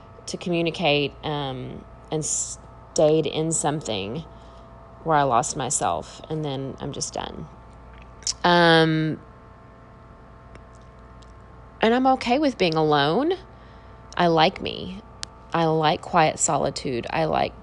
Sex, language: female, English